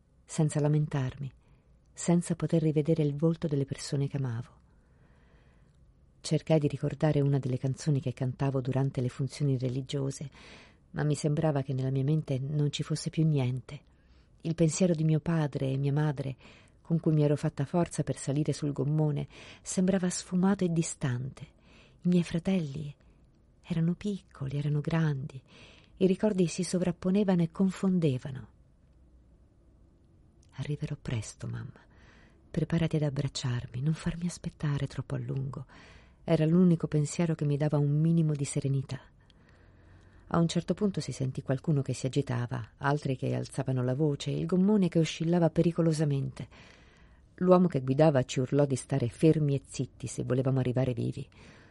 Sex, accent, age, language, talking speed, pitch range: female, native, 50-69, Italian, 145 wpm, 130-160 Hz